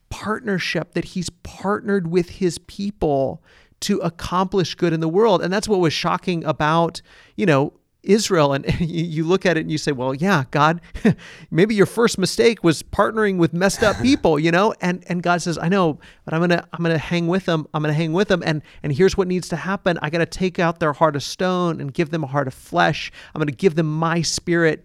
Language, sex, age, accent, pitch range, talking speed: English, male, 40-59, American, 150-175 Hz, 235 wpm